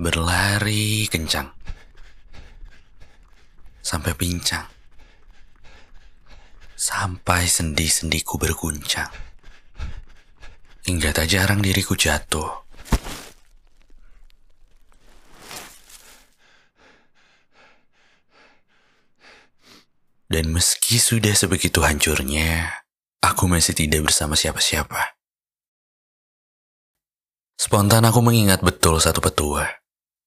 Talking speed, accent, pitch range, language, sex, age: 55 wpm, native, 75-95 Hz, Indonesian, male, 30-49